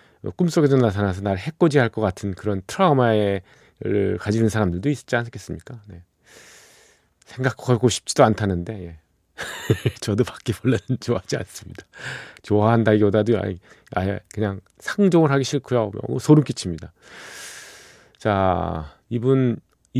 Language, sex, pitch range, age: Korean, male, 100-140 Hz, 40-59